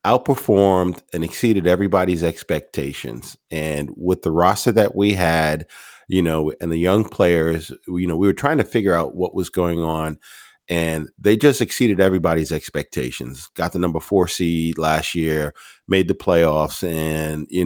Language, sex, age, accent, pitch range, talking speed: English, male, 40-59, American, 80-100 Hz, 165 wpm